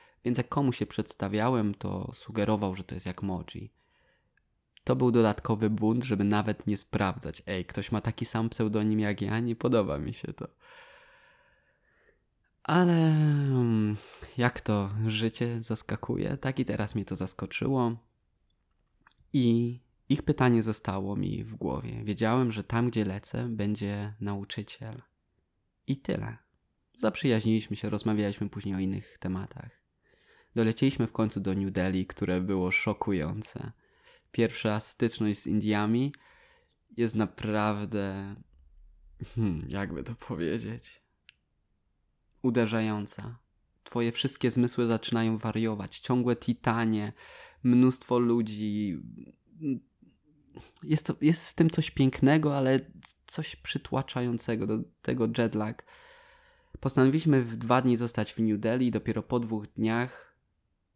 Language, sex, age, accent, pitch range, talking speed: Polish, male, 20-39, native, 105-125 Hz, 115 wpm